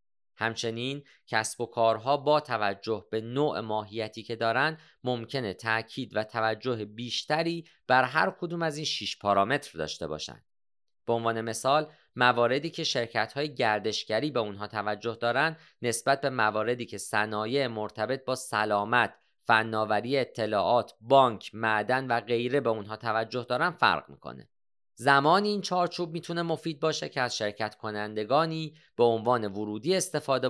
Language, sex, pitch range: Persian, male, 110-140 Hz